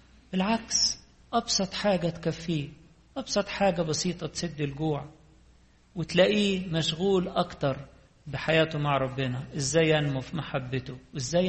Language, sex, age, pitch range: English, male, 50-69, 135-165 Hz